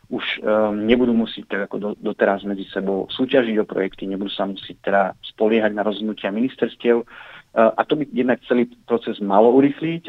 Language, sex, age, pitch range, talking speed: Slovak, male, 40-59, 105-115 Hz, 180 wpm